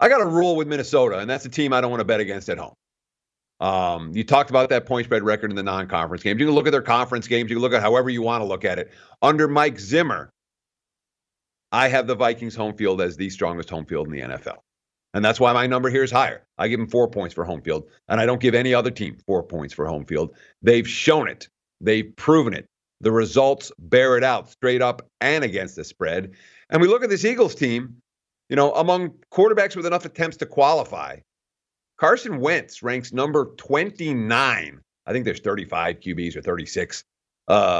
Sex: male